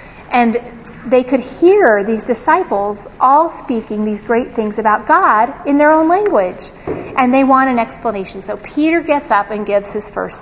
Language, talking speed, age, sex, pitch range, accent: English, 175 wpm, 40-59, female, 205-265 Hz, American